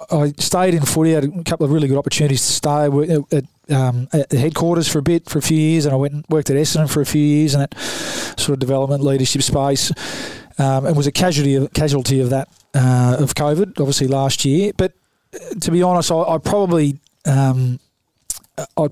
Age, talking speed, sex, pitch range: 20-39, 215 wpm, male, 135-160 Hz